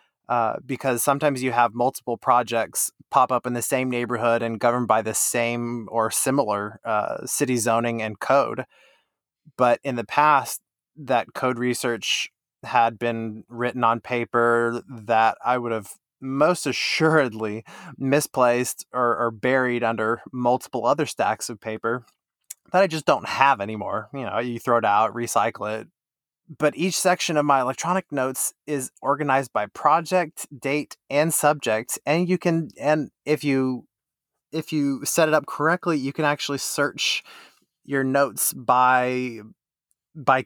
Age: 20-39